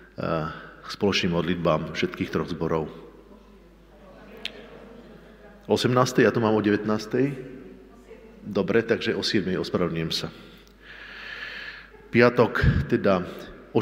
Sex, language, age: male, Slovak, 50-69